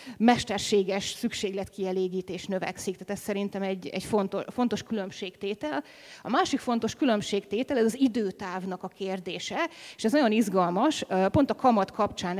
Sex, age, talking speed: female, 30-49, 130 wpm